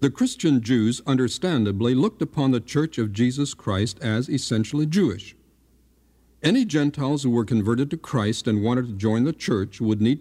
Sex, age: male, 60-79